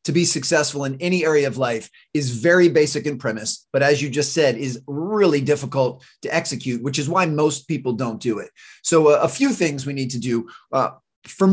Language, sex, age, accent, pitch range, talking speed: English, male, 30-49, American, 135-165 Hz, 215 wpm